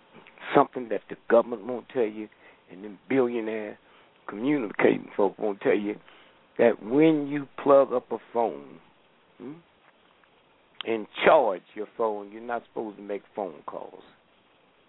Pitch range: 110-170 Hz